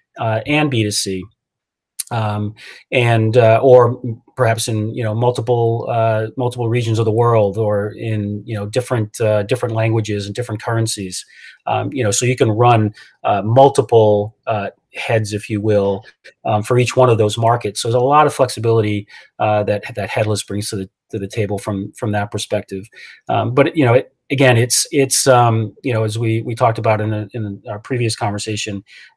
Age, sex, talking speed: 30-49, male, 190 wpm